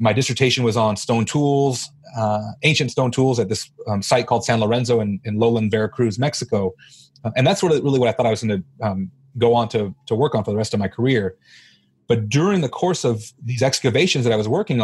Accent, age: American, 30-49